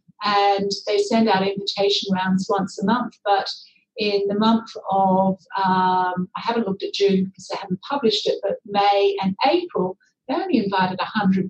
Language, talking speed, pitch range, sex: English, 165 wpm, 190-225 Hz, female